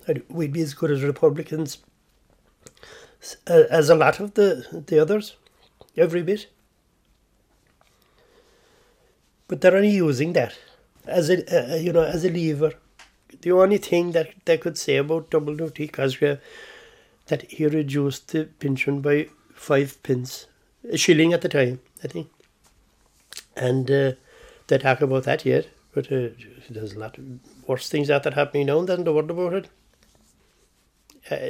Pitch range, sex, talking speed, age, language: 145-175 Hz, male, 155 wpm, 60-79, English